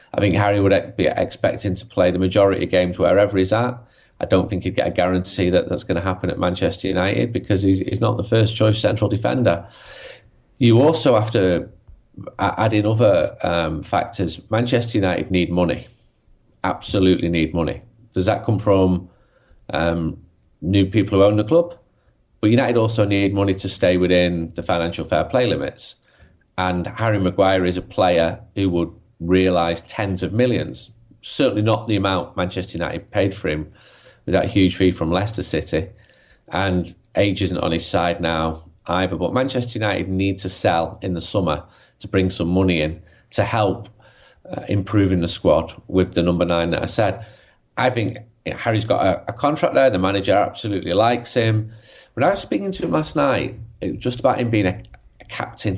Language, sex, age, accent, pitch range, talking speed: English, male, 30-49, British, 90-110 Hz, 185 wpm